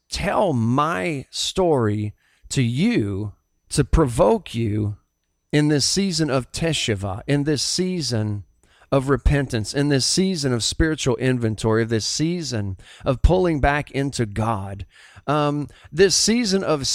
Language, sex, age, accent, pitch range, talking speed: English, male, 40-59, American, 110-155 Hz, 125 wpm